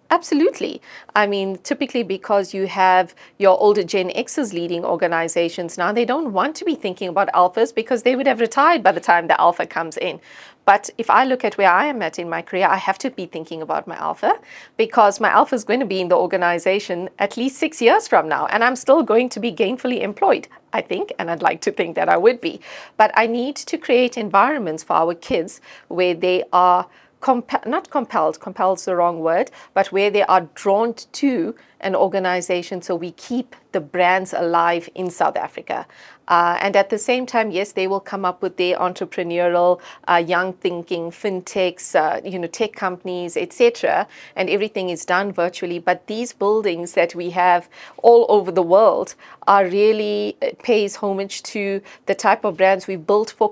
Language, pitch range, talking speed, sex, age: English, 180-230 Hz, 200 wpm, female, 40-59